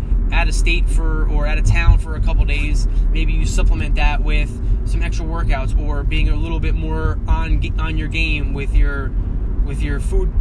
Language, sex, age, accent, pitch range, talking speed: English, male, 20-39, American, 80-100 Hz, 195 wpm